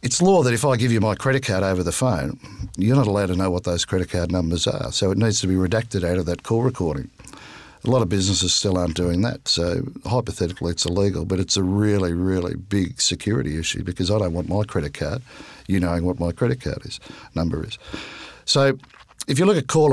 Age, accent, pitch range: 50-69, Australian, 90-120 Hz